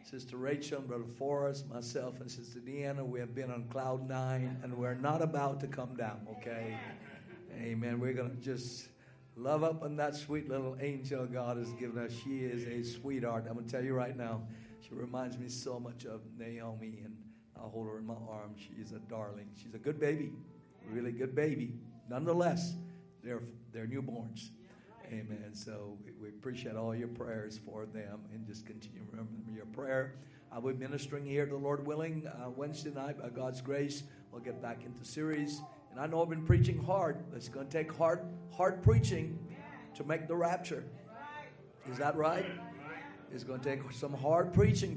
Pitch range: 120-150 Hz